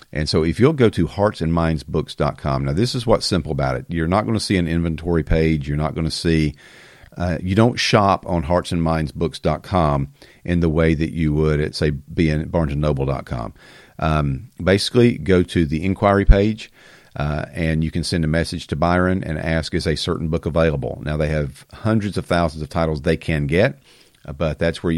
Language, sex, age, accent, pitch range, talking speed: English, male, 40-59, American, 75-95 Hz, 195 wpm